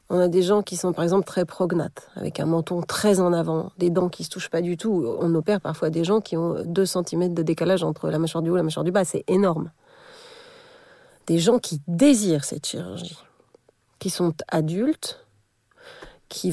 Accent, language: French, French